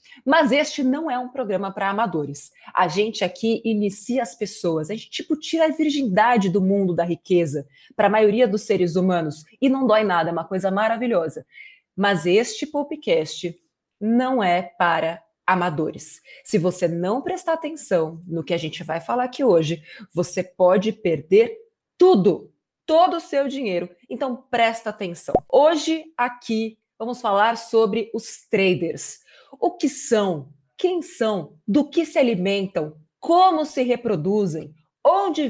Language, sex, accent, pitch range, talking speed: Portuguese, female, Brazilian, 185-265 Hz, 150 wpm